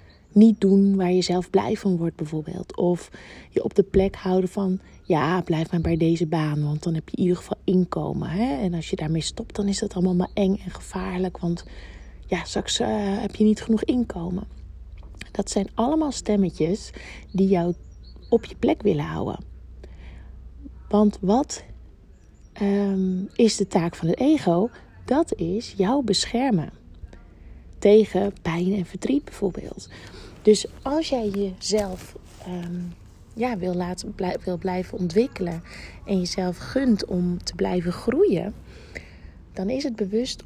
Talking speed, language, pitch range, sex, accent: 150 wpm, Dutch, 165-205 Hz, female, Dutch